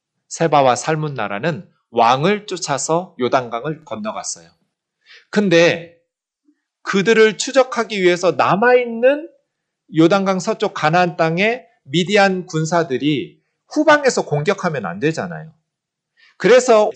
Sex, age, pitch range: male, 30-49, 150-195 Hz